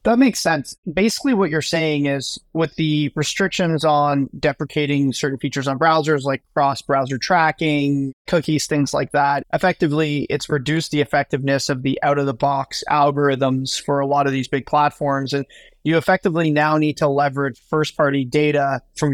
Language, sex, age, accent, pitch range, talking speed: English, male, 30-49, American, 145-165 Hz, 170 wpm